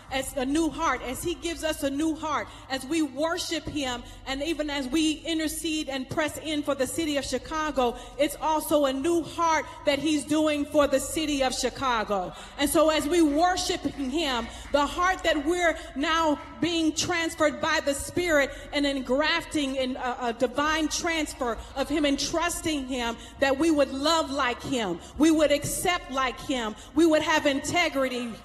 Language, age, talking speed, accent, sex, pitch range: English, 40-59, 180 wpm, American, female, 270-315 Hz